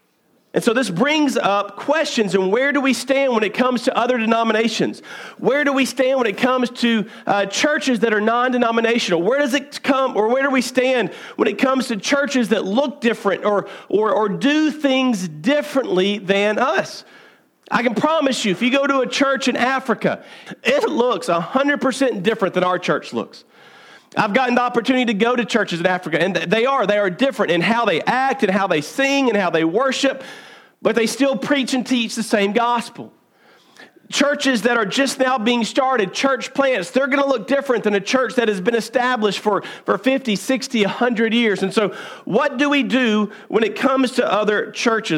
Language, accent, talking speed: English, American, 200 wpm